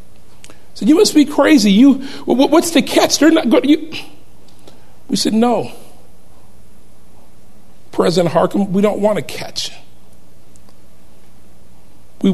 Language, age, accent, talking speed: English, 50-69, American, 115 wpm